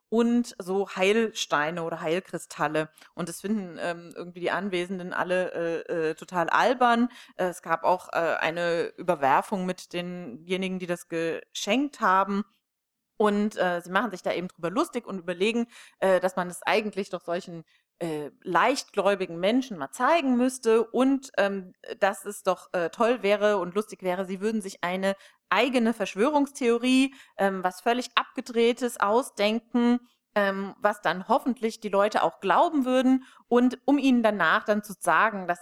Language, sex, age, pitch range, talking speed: German, female, 30-49, 175-240 Hz, 155 wpm